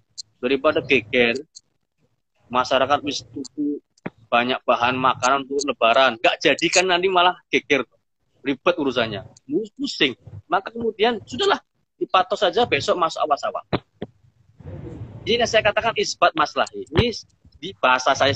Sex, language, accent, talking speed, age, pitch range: male, Indonesian, native, 115 wpm, 30-49, 155-225 Hz